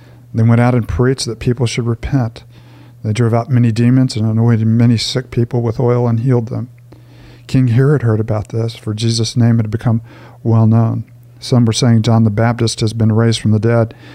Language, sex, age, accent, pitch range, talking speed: English, male, 50-69, American, 115-125 Hz, 205 wpm